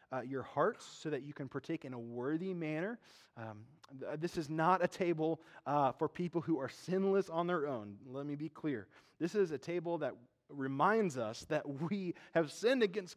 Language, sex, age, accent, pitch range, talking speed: English, male, 20-39, American, 120-170 Hz, 200 wpm